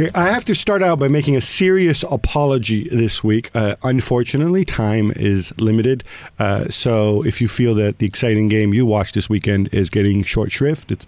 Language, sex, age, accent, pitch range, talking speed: English, male, 50-69, American, 105-140 Hz, 190 wpm